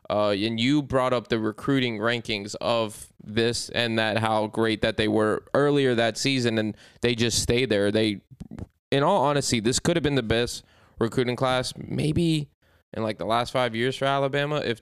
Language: English